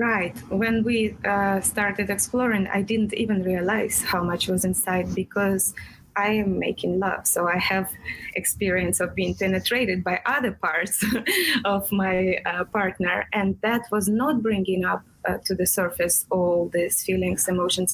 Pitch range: 180-205 Hz